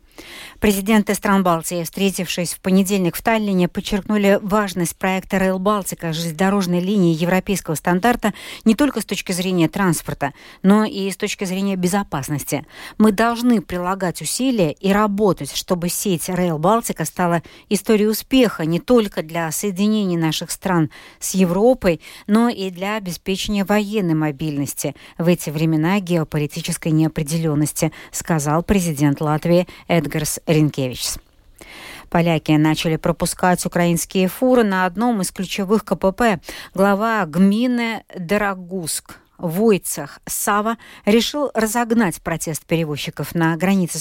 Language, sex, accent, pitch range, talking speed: Russian, female, native, 165-210 Hz, 115 wpm